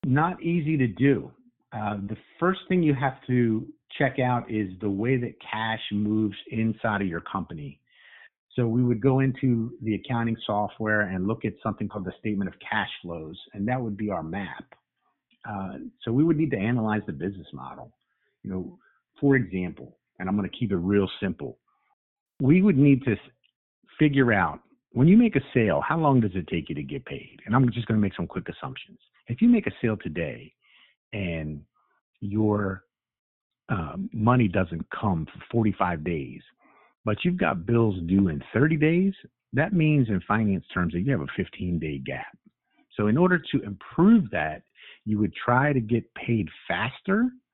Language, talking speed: English, 185 wpm